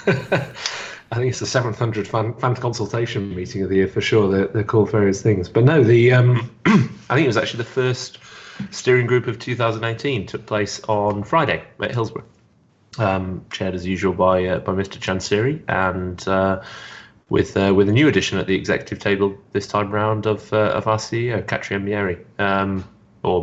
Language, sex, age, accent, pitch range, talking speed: English, male, 30-49, British, 95-115 Hz, 190 wpm